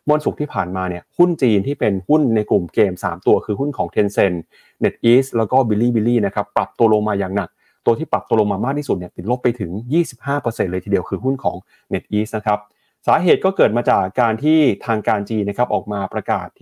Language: Thai